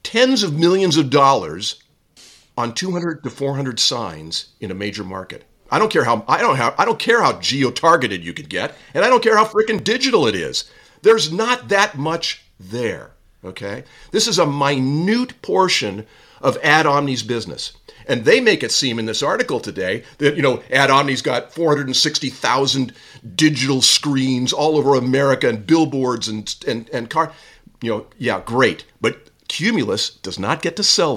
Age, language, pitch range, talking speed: 50-69, English, 130-190 Hz, 175 wpm